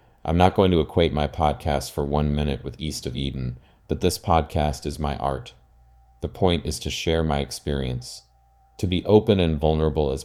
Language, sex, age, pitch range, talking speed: English, male, 30-49, 70-80 Hz, 195 wpm